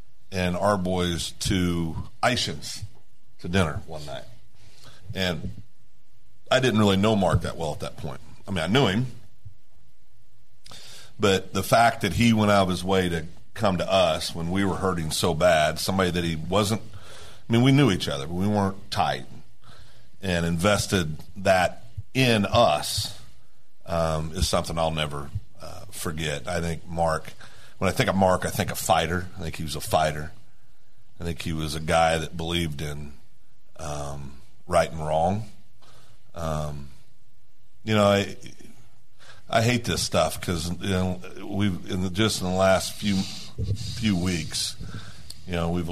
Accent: American